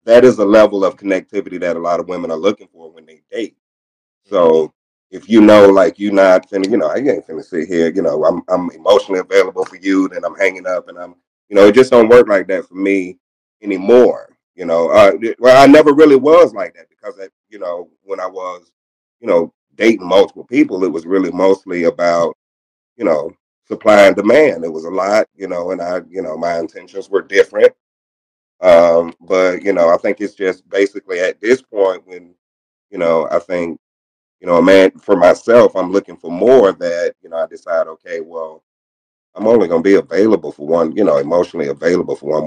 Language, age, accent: English, 30-49, American